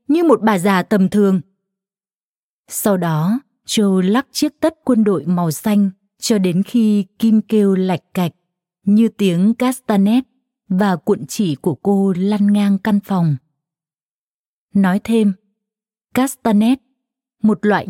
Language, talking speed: Vietnamese, 135 wpm